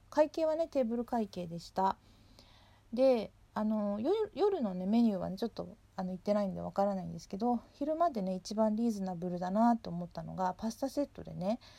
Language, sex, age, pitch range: Japanese, female, 40-59, 185-235 Hz